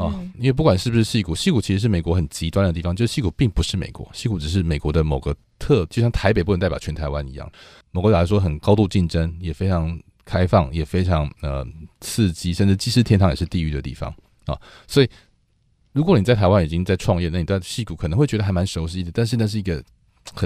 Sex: male